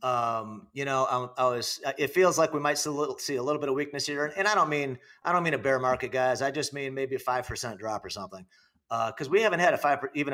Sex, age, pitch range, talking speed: male, 40-59, 130-155 Hz, 290 wpm